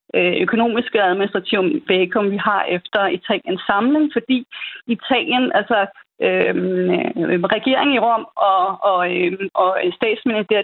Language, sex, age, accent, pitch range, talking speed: Danish, female, 30-49, native, 200-255 Hz, 120 wpm